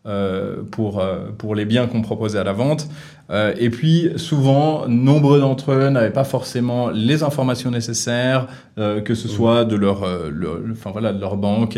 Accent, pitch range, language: French, 110-135 Hz, French